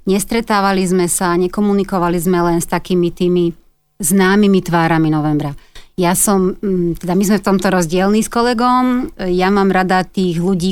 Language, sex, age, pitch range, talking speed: Slovak, female, 30-49, 175-195 Hz, 145 wpm